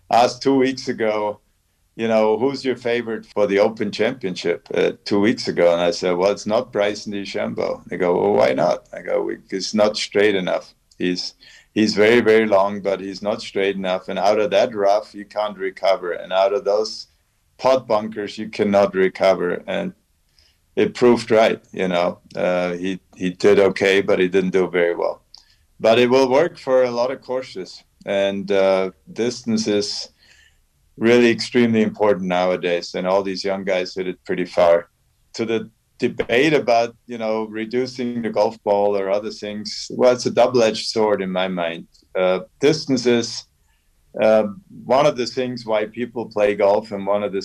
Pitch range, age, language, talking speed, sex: 95-115 Hz, 50-69, English, 180 wpm, male